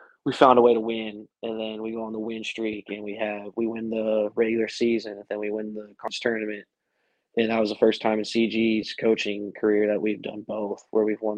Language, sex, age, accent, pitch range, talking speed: English, male, 20-39, American, 105-115 Hz, 245 wpm